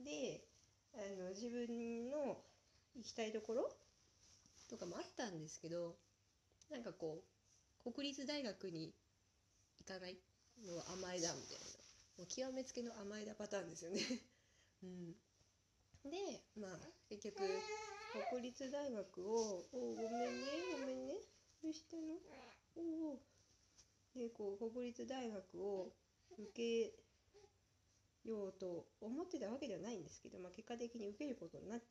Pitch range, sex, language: 170-260 Hz, female, Japanese